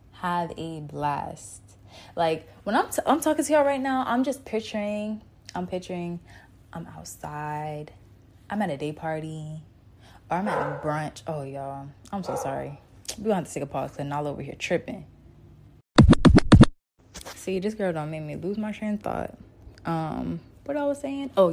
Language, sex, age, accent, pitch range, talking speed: English, female, 20-39, American, 155-180 Hz, 175 wpm